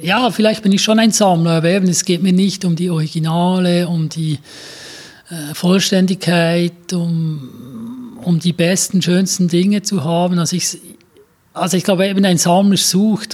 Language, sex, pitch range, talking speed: German, male, 170-190 Hz, 165 wpm